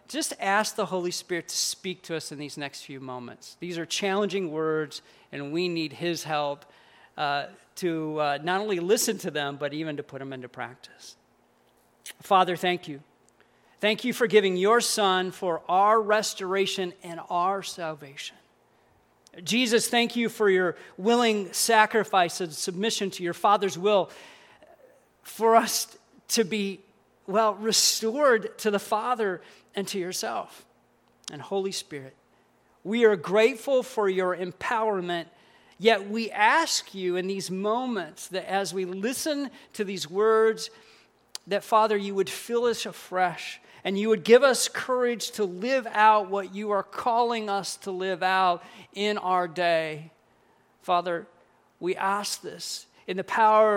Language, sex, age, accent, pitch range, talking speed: English, male, 40-59, American, 180-225 Hz, 150 wpm